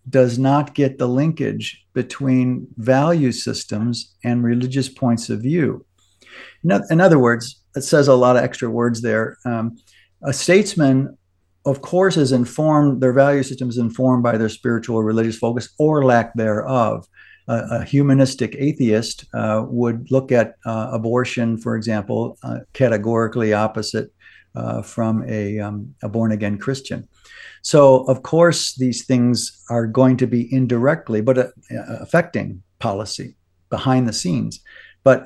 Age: 50-69